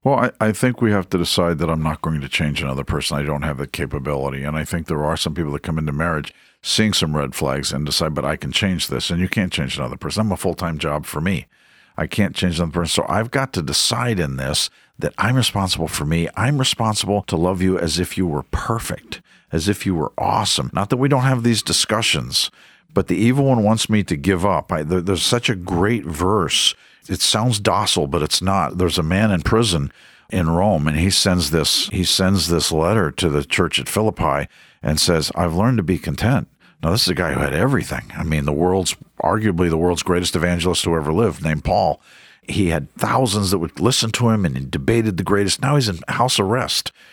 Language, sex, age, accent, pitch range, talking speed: English, male, 50-69, American, 80-105 Hz, 230 wpm